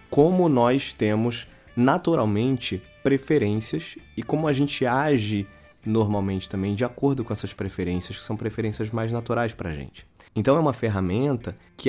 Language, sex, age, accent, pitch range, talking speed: Portuguese, male, 20-39, Brazilian, 90-120 Hz, 150 wpm